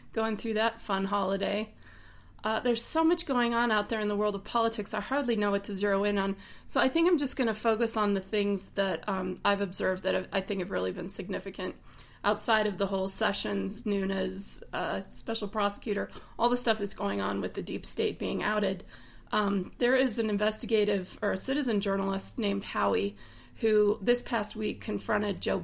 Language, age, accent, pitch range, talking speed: English, 30-49, American, 190-225 Hz, 200 wpm